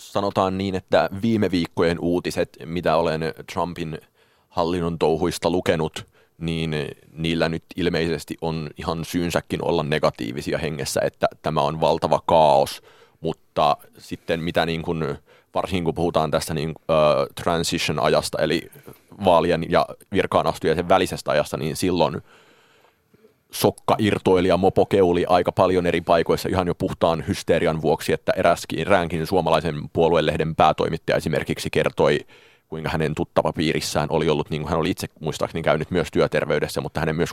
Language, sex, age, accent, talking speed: Finnish, male, 30-49, native, 130 wpm